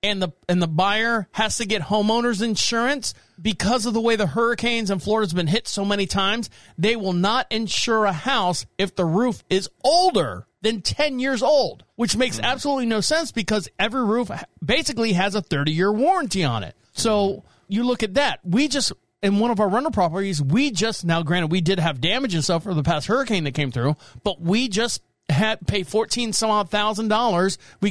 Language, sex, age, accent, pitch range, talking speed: English, male, 40-59, American, 175-230 Hz, 205 wpm